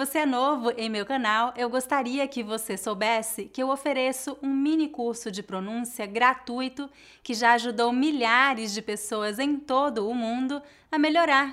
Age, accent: 20-39, Brazilian